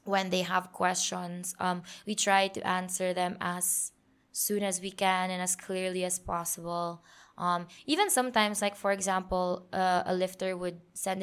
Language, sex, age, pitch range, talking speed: English, female, 20-39, 180-215 Hz, 165 wpm